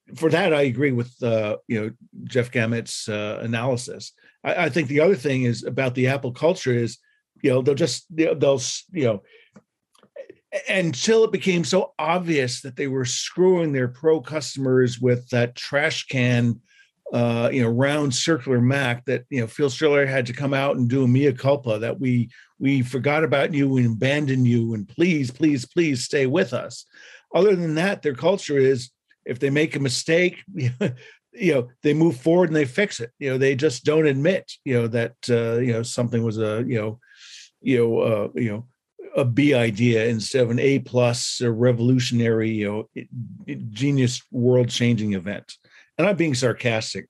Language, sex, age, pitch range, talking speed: English, male, 50-69, 120-150 Hz, 185 wpm